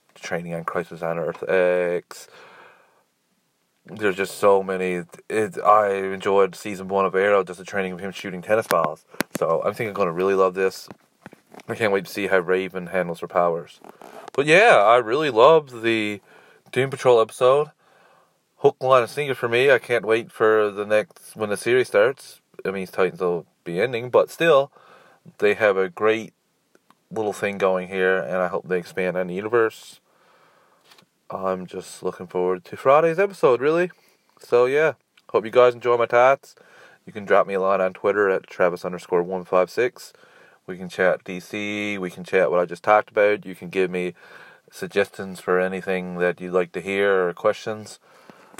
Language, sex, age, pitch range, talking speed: English, male, 30-49, 90-115 Hz, 185 wpm